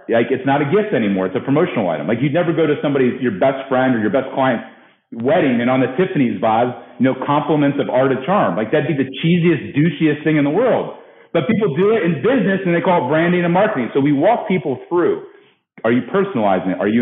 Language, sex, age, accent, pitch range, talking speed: English, male, 40-59, American, 130-170 Hz, 250 wpm